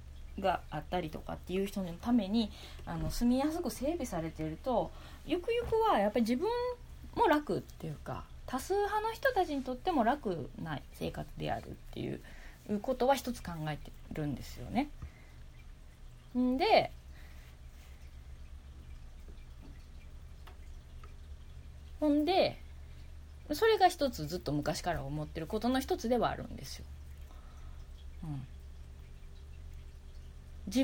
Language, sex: Japanese, female